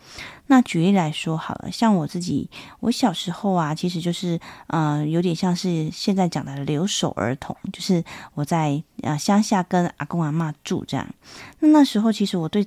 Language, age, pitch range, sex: Chinese, 30-49, 160-195 Hz, female